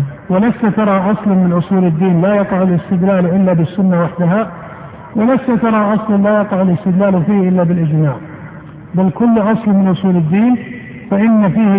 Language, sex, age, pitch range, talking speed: Arabic, male, 50-69, 175-210 Hz, 145 wpm